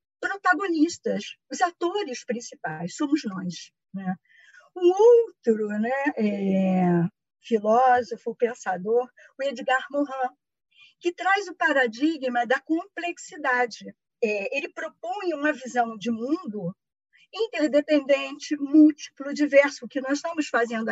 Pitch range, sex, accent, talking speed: 230-325 Hz, female, Brazilian, 100 wpm